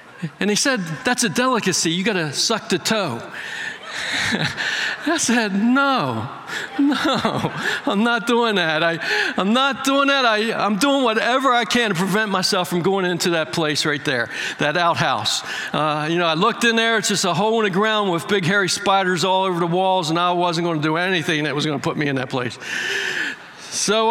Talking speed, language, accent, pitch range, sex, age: 205 wpm, English, American, 175-225 Hz, male, 60-79